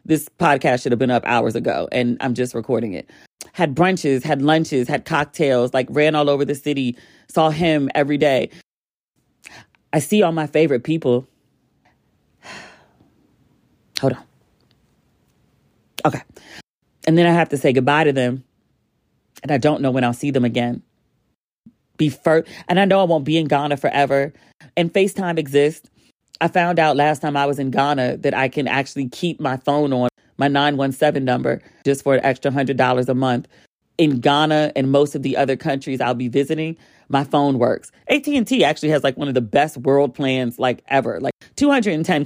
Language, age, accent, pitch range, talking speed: English, 40-59, American, 135-160 Hz, 175 wpm